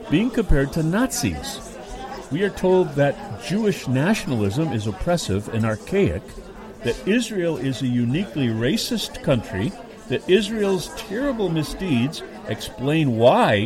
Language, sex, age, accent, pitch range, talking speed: English, male, 50-69, American, 110-170 Hz, 120 wpm